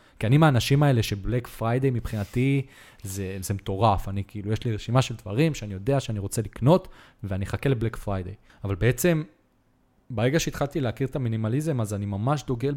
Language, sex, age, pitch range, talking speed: Hebrew, male, 20-39, 105-130 Hz, 175 wpm